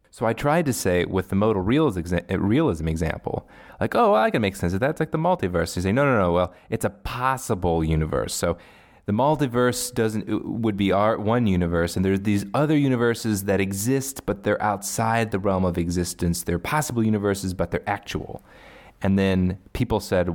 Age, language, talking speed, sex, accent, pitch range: 30-49, English, 200 wpm, male, American, 90-115 Hz